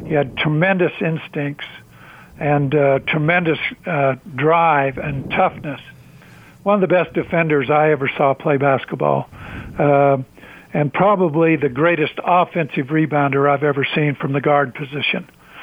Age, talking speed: 60-79, 135 wpm